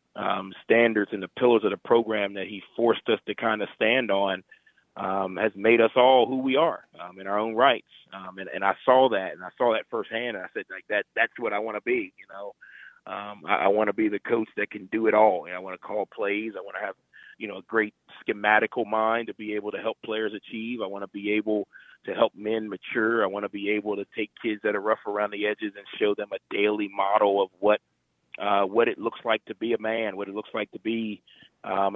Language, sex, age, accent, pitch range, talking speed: English, male, 30-49, American, 100-115 Hz, 260 wpm